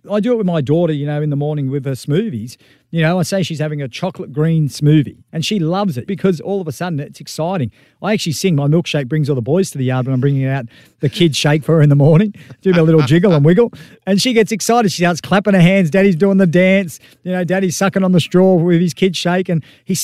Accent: Australian